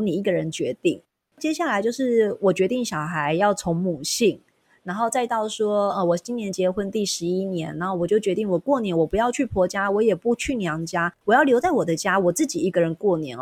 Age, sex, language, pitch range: 30-49, female, Chinese, 175-230 Hz